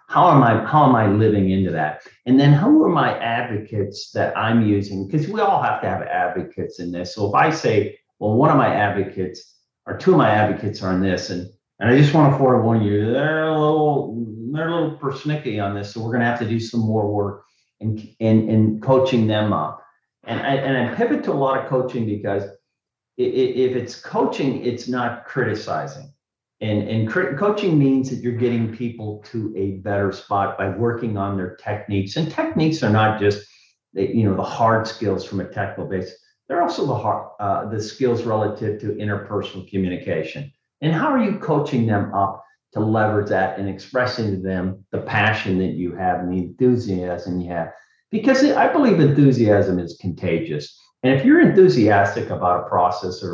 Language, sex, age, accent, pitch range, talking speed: English, male, 40-59, American, 100-130 Hz, 195 wpm